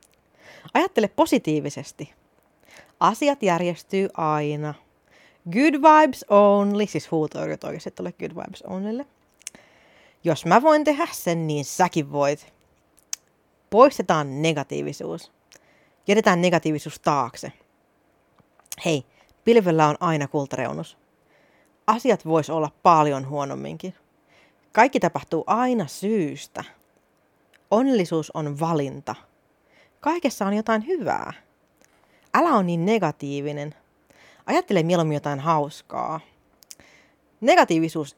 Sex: female